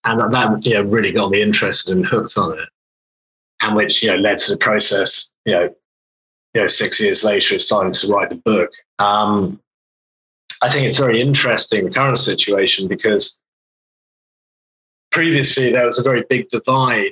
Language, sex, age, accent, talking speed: English, male, 30-49, British, 175 wpm